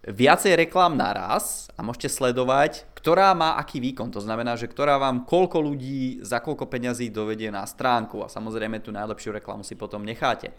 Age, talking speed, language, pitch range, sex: 20-39, 175 wpm, Czech, 110-140 Hz, male